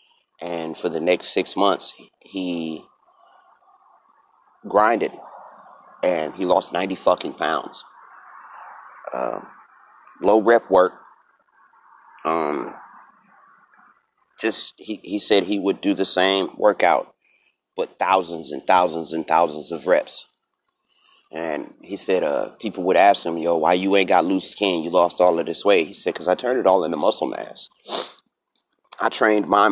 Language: English